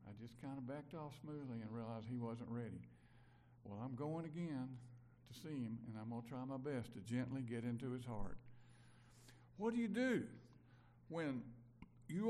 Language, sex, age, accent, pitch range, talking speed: English, male, 50-69, American, 120-160 Hz, 185 wpm